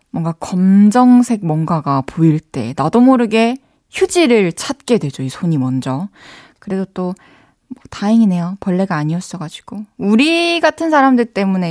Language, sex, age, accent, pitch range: Korean, female, 20-39, native, 170-245 Hz